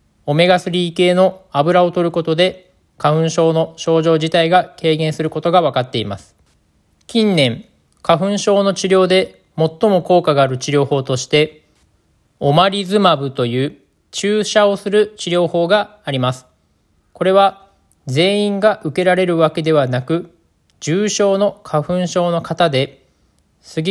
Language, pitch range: Japanese, 145-185 Hz